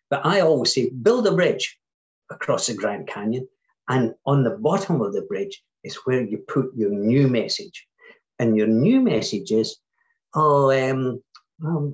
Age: 50-69